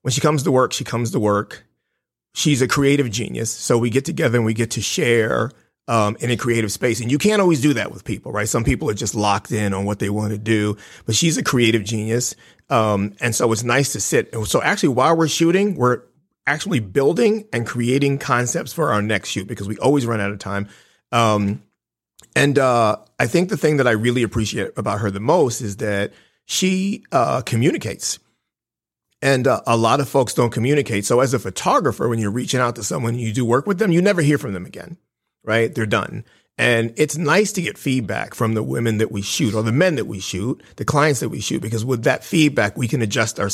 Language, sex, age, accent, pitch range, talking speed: English, male, 30-49, American, 105-135 Hz, 225 wpm